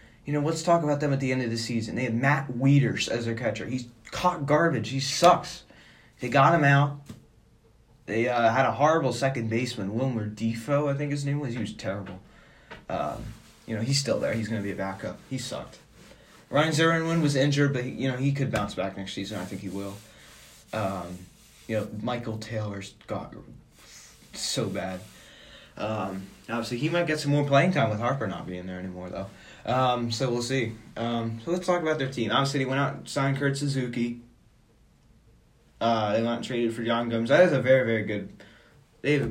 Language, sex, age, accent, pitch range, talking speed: English, male, 20-39, American, 110-140 Hz, 210 wpm